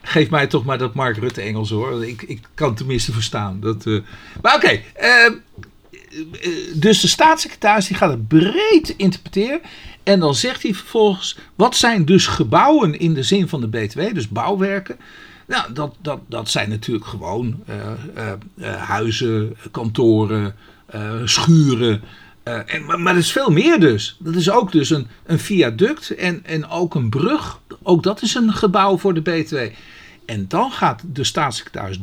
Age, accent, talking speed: 50-69, Dutch, 175 wpm